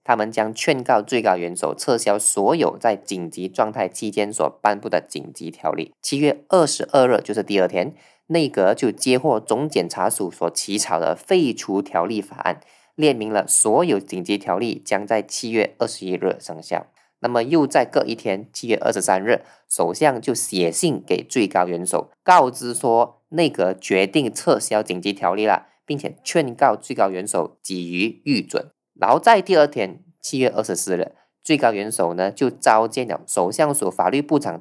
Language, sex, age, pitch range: Chinese, male, 20-39, 100-140 Hz